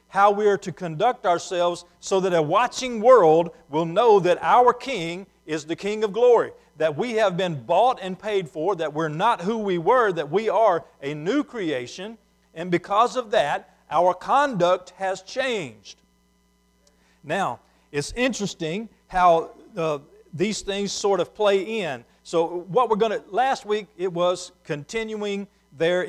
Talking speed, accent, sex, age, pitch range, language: 160 wpm, American, male, 50-69, 165-215 Hz, English